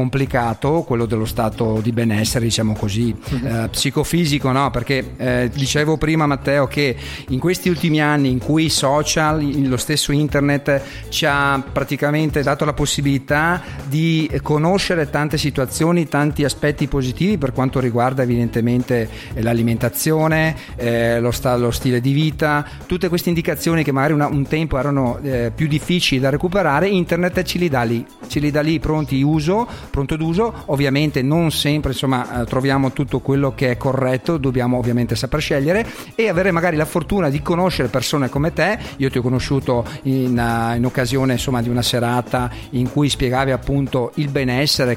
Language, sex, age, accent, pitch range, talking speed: Italian, male, 40-59, native, 125-155 Hz, 160 wpm